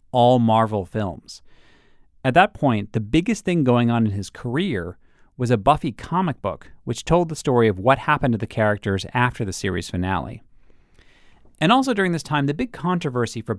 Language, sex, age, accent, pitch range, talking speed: English, male, 40-59, American, 100-135 Hz, 185 wpm